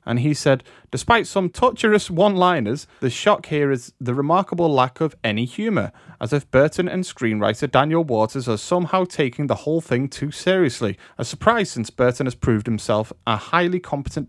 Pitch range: 115-160 Hz